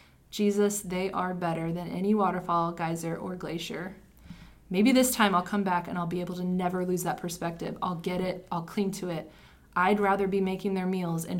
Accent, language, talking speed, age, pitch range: American, English, 205 wpm, 20-39, 185-235 Hz